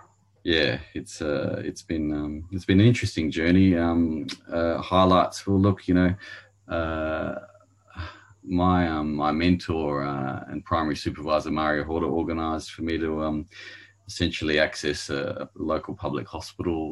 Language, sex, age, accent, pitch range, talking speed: English, male, 30-49, Australian, 75-90 Hz, 145 wpm